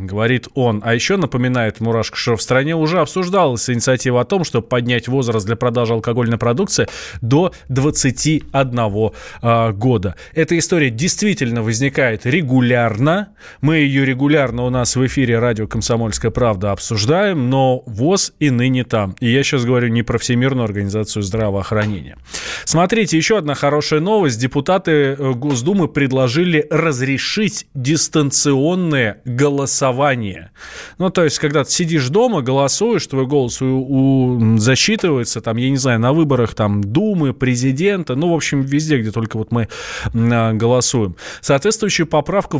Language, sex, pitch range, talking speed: Russian, male, 115-150 Hz, 135 wpm